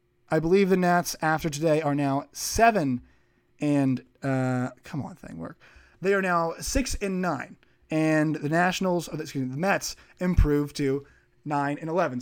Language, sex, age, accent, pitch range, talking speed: English, male, 20-39, American, 145-195 Hz, 170 wpm